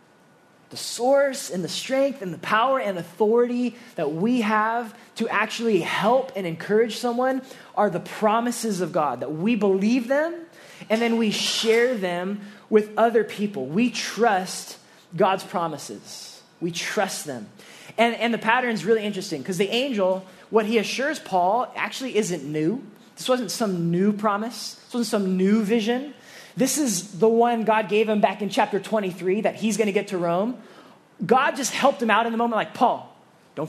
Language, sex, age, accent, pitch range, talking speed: English, male, 20-39, American, 180-230 Hz, 175 wpm